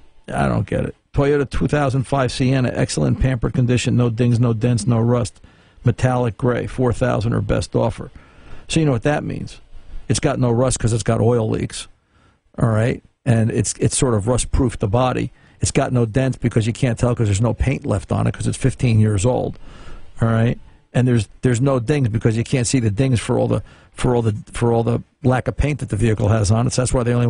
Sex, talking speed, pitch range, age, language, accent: male, 230 wpm, 120-135 Hz, 50-69, English, American